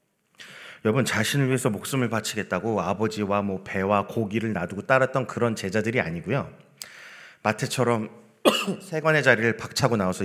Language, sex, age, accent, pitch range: Korean, male, 30-49, native, 95-135 Hz